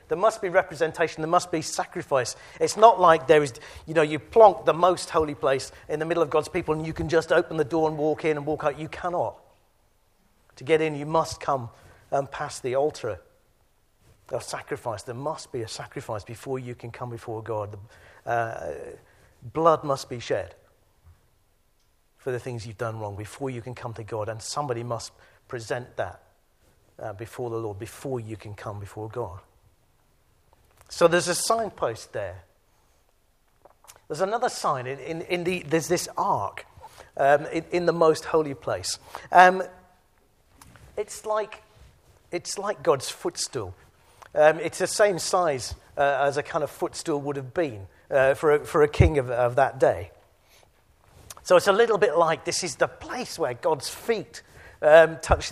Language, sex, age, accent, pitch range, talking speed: English, male, 50-69, British, 115-165 Hz, 180 wpm